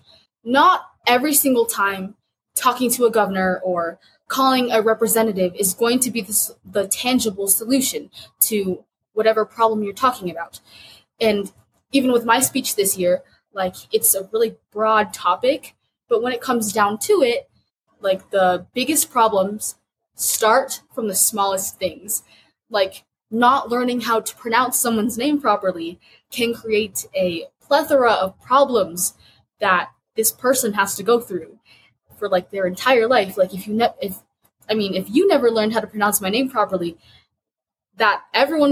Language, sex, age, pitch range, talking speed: English, female, 20-39, 195-250 Hz, 155 wpm